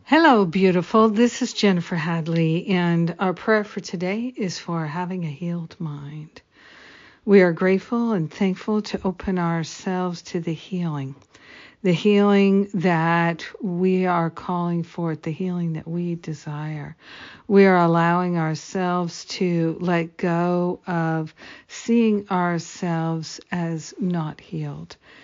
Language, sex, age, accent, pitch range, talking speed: English, female, 60-79, American, 165-185 Hz, 125 wpm